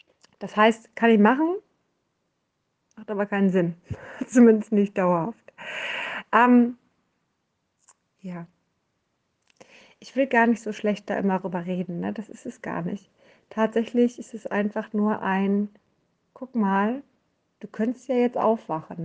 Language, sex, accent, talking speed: German, female, German, 135 wpm